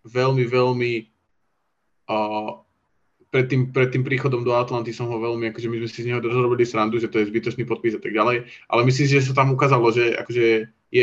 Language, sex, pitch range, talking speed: Slovak, male, 115-125 Hz, 205 wpm